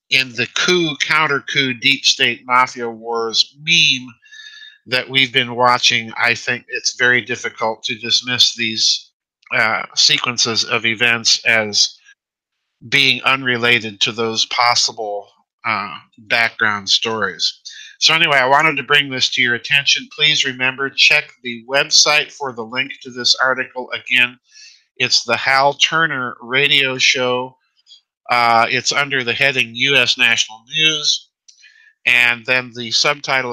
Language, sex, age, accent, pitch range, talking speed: English, male, 50-69, American, 115-140 Hz, 130 wpm